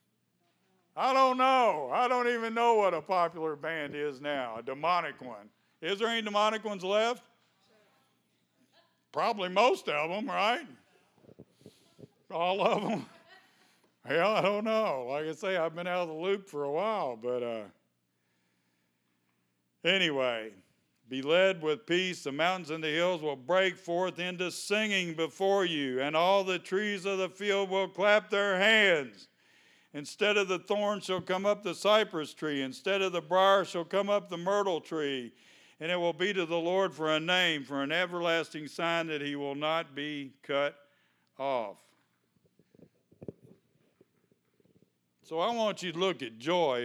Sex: male